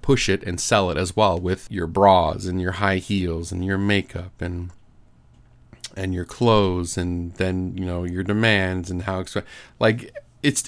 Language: English